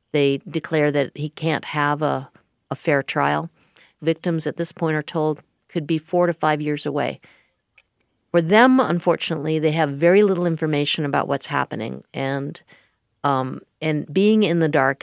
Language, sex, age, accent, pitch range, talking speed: English, female, 50-69, American, 150-175 Hz, 165 wpm